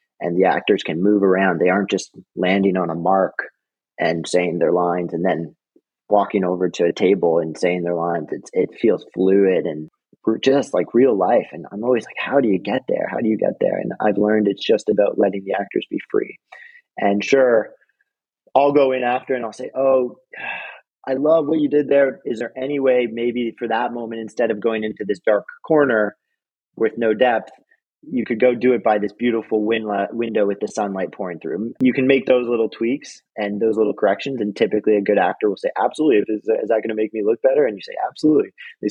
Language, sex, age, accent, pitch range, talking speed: English, male, 30-49, American, 100-130 Hz, 215 wpm